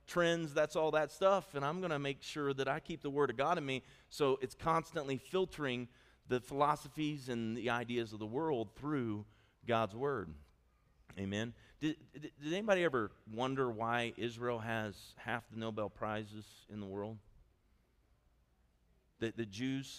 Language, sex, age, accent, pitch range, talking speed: English, male, 40-59, American, 100-130 Hz, 165 wpm